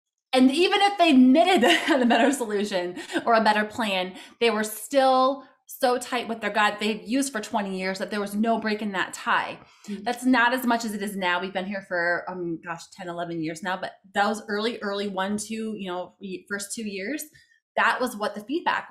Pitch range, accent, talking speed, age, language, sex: 185-235 Hz, American, 215 wpm, 20-39, English, female